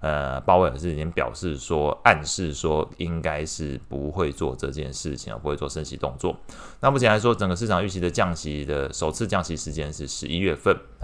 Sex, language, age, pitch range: male, Chinese, 20-39, 75-105 Hz